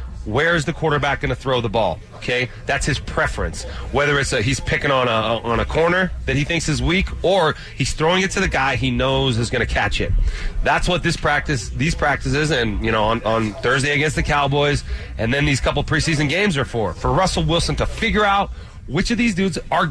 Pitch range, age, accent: 125-175 Hz, 30-49, American